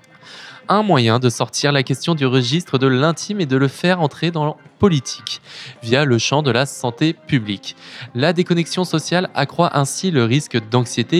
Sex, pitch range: male, 120-155 Hz